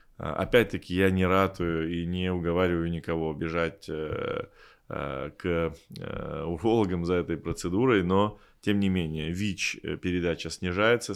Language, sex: Russian, male